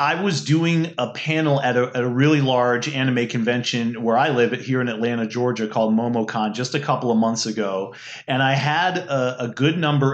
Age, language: 30-49, English